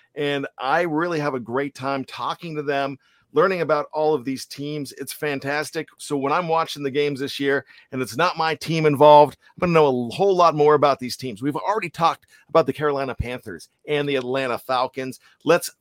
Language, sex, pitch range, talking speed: English, male, 140-185 Hz, 210 wpm